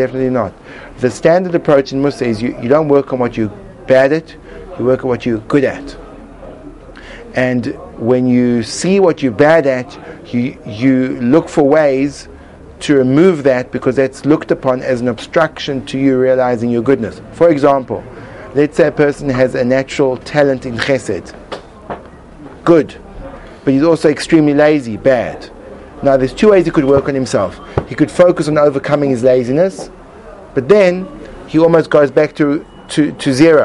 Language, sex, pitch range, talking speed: English, male, 130-160 Hz, 175 wpm